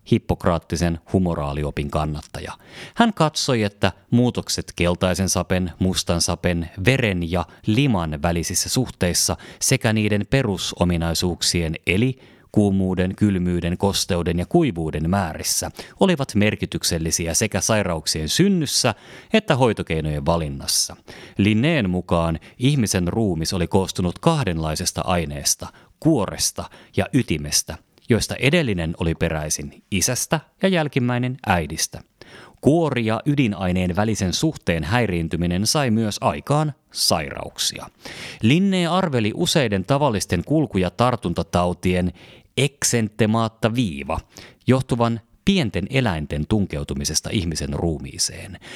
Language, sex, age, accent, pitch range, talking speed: Finnish, male, 30-49, native, 85-120 Hz, 95 wpm